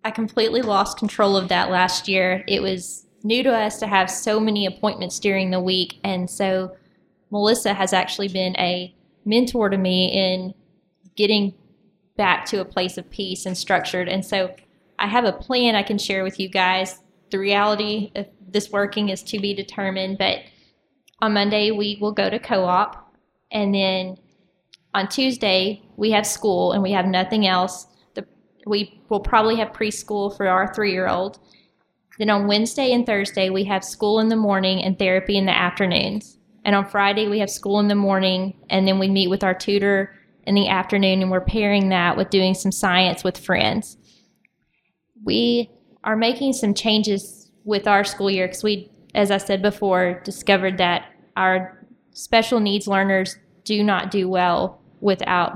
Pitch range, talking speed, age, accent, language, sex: 185-210 Hz, 175 wpm, 10-29, American, English, female